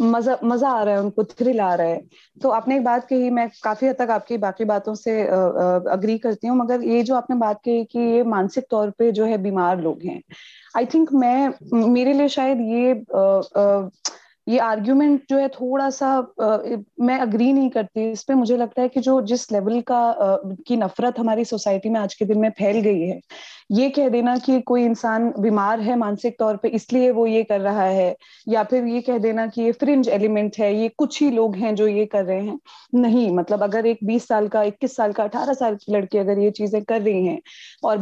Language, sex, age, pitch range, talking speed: Hindi, female, 20-39, 210-255 Hz, 230 wpm